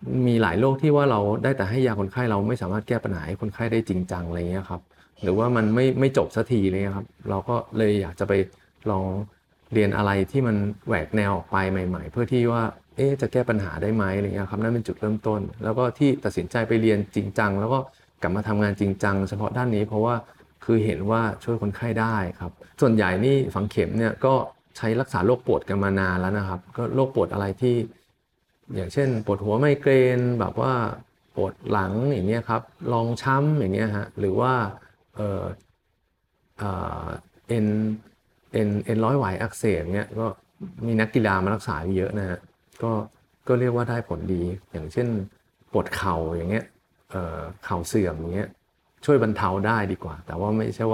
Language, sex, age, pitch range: Thai, male, 20-39, 95-120 Hz